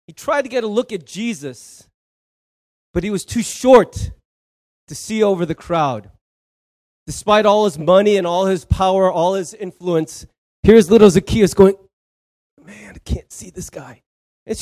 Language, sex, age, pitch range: English, male, 30-49, 160-235 Hz